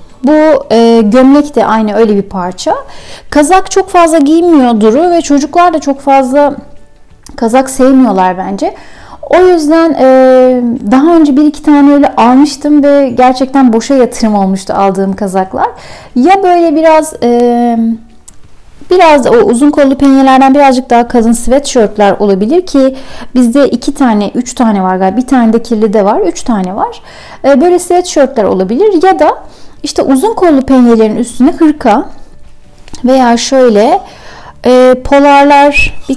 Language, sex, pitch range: Turkish, female, 230-300 Hz